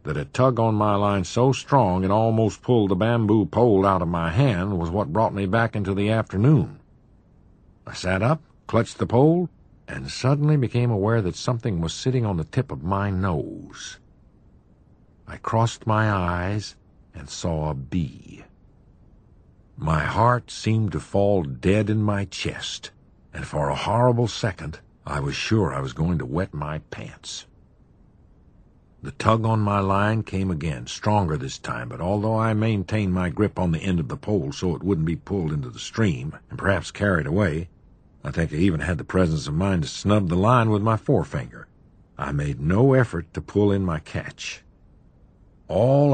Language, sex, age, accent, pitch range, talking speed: English, male, 60-79, American, 90-115 Hz, 180 wpm